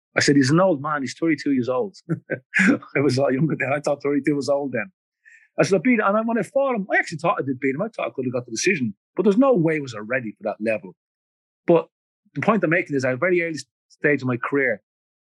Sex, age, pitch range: male, 40-59, 115-160 Hz